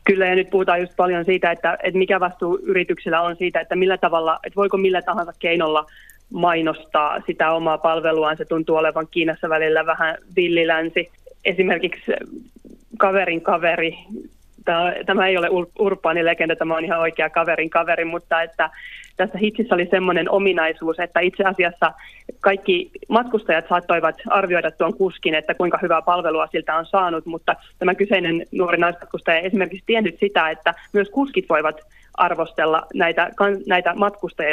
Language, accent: Finnish, native